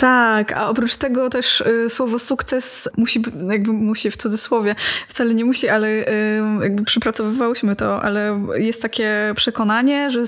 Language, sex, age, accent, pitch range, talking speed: Polish, female, 20-39, native, 215-235 Hz, 140 wpm